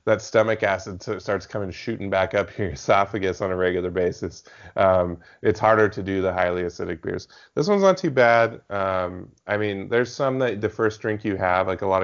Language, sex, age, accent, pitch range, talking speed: English, male, 20-39, American, 90-105 Hz, 215 wpm